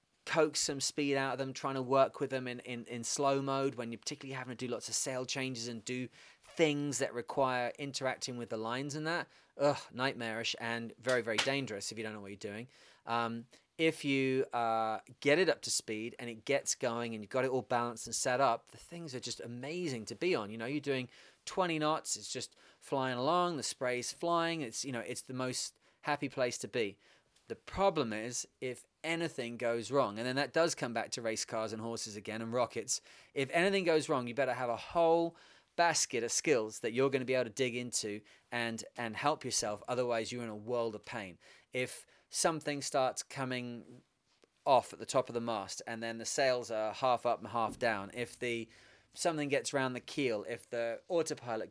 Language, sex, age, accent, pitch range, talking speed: English, male, 30-49, British, 115-140 Hz, 215 wpm